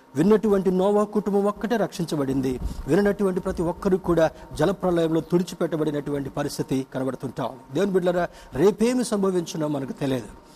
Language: Telugu